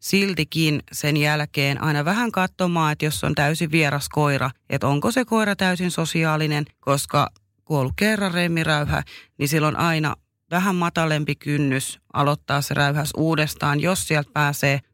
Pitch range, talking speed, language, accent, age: 135-160 Hz, 150 wpm, Finnish, native, 30-49